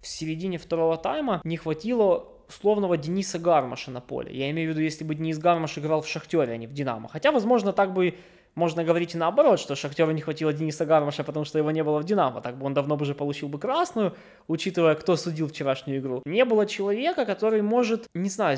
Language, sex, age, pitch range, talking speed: Russian, male, 20-39, 160-210 Hz, 220 wpm